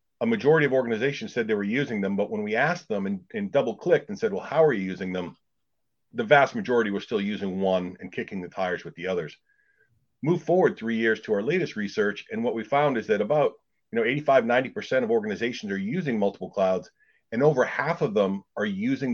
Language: English